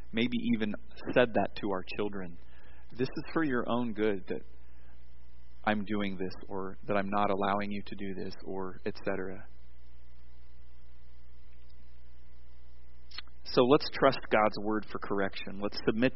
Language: English